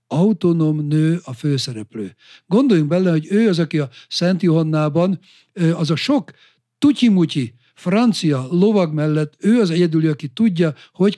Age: 60-79